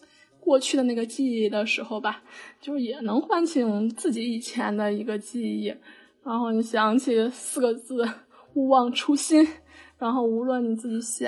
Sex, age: female, 10-29